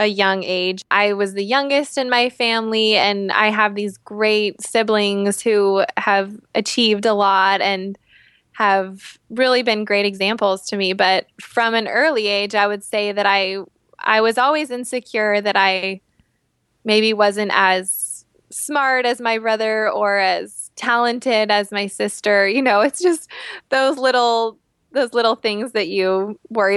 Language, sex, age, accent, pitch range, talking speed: English, female, 20-39, American, 195-235 Hz, 155 wpm